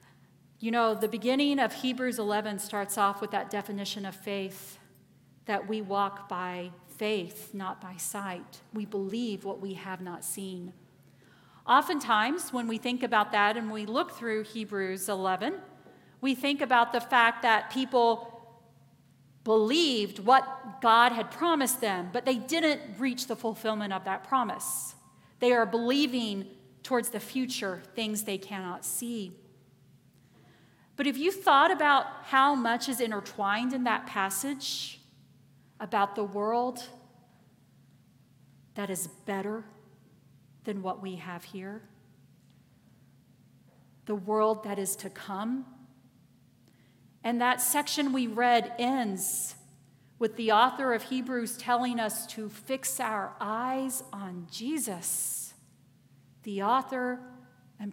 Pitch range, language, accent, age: 190-245 Hz, English, American, 40-59